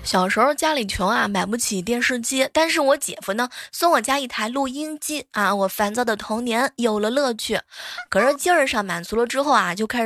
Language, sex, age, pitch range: Chinese, female, 20-39, 210-285 Hz